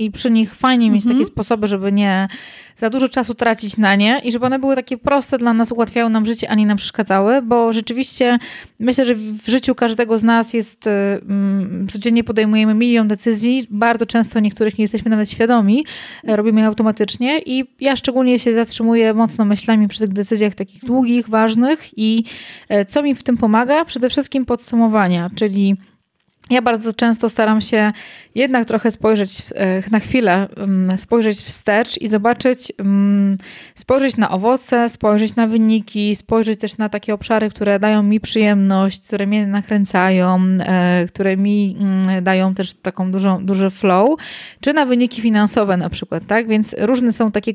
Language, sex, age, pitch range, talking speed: Polish, female, 20-39, 205-240 Hz, 160 wpm